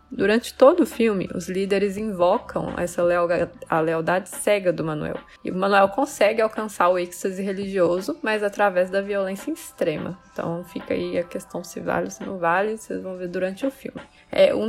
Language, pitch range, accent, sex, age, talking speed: Portuguese, 180-220 Hz, Brazilian, female, 20-39, 190 wpm